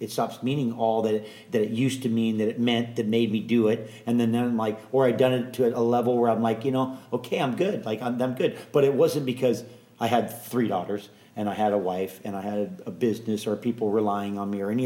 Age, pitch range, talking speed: 40-59, 110-125 Hz, 275 wpm